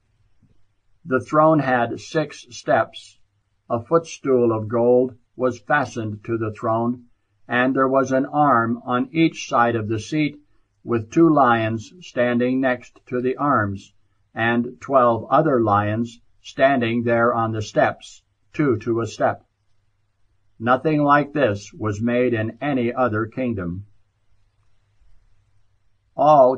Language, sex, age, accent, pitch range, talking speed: English, male, 60-79, American, 105-130 Hz, 125 wpm